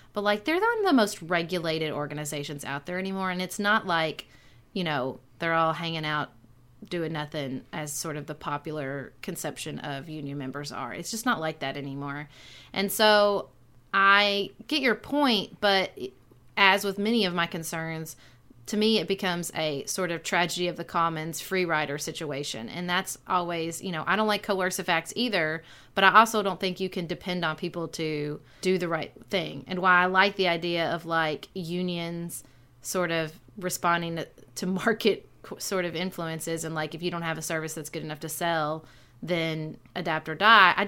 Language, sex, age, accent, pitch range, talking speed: English, female, 30-49, American, 155-195 Hz, 190 wpm